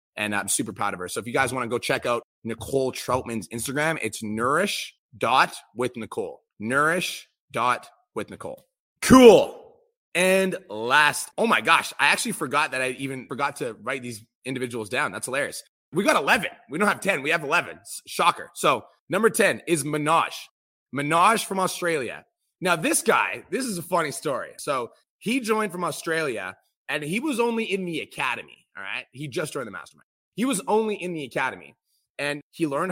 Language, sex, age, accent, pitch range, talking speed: English, male, 30-49, American, 125-175 Hz, 175 wpm